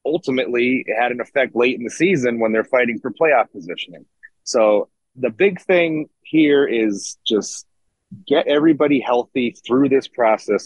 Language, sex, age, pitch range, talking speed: English, male, 30-49, 110-140 Hz, 160 wpm